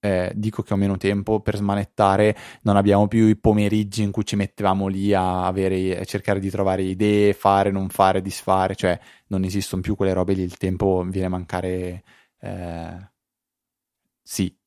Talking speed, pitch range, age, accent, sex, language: 175 wpm, 95-110 Hz, 20-39, native, male, Italian